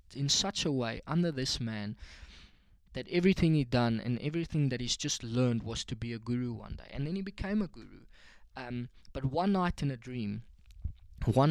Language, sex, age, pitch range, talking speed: English, male, 20-39, 115-150 Hz, 200 wpm